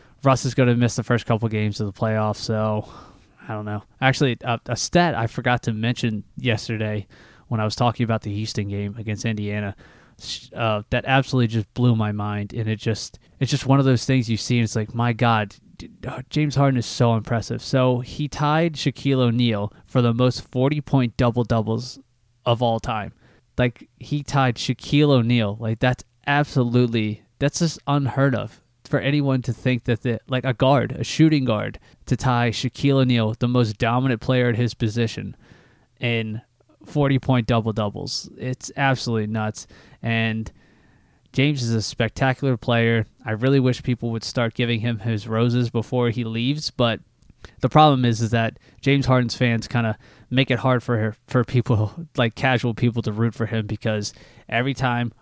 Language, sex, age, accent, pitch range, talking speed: English, male, 20-39, American, 110-130 Hz, 180 wpm